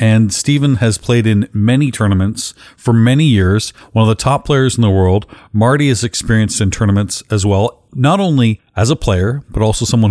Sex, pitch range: male, 100-125 Hz